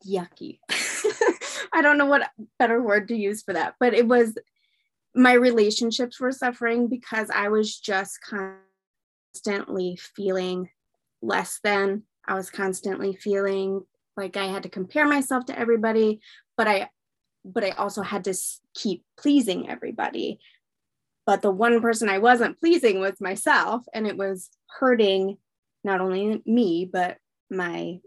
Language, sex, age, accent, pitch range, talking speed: English, female, 20-39, American, 190-230 Hz, 140 wpm